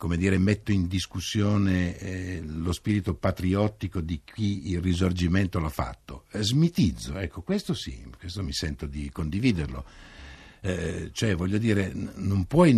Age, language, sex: 60-79, Italian, male